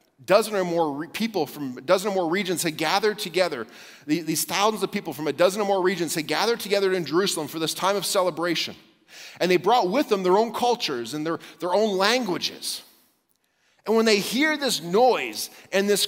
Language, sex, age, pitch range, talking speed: English, male, 40-59, 145-210 Hz, 200 wpm